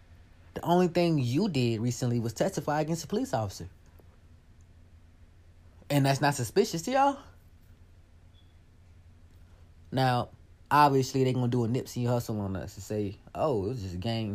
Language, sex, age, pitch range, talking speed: English, male, 30-49, 85-125 Hz, 155 wpm